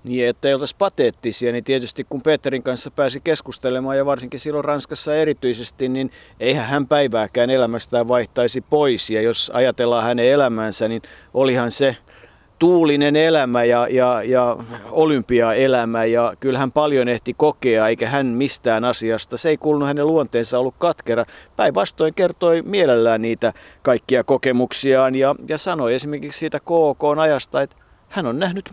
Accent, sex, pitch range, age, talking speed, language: native, male, 120-145 Hz, 50-69, 150 wpm, Finnish